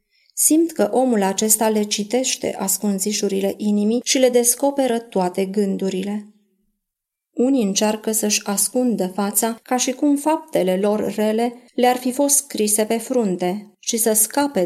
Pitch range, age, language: 195-230 Hz, 30-49, Romanian